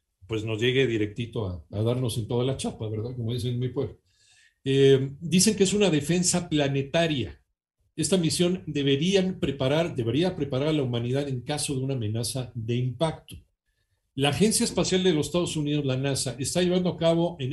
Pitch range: 120-155 Hz